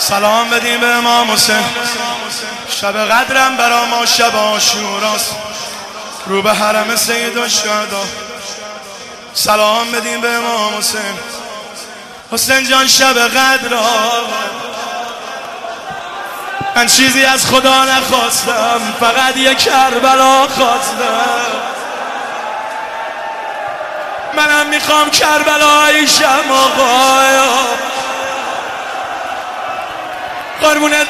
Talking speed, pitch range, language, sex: 75 wpm, 240-300 Hz, Persian, male